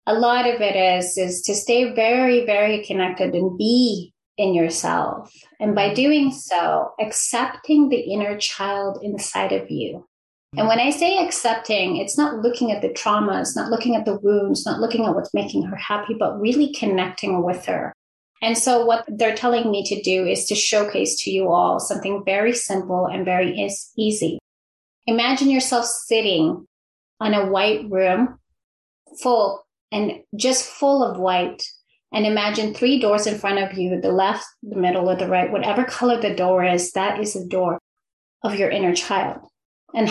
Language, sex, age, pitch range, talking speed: English, female, 30-49, 190-240 Hz, 175 wpm